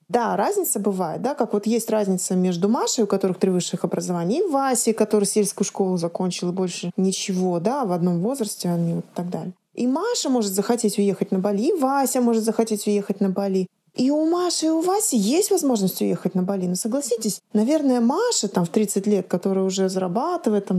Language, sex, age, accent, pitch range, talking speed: Russian, female, 20-39, native, 190-235 Hz, 195 wpm